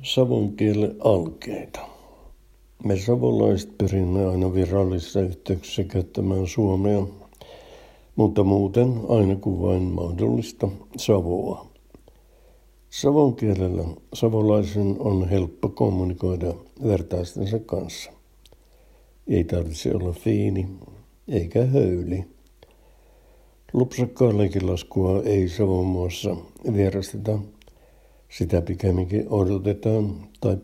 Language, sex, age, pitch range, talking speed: Finnish, male, 60-79, 90-110 Hz, 80 wpm